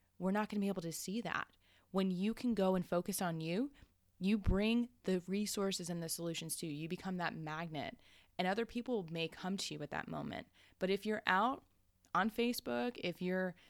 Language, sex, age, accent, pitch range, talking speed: English, female, 20-39, American, 160-210 Hz, 205 wpm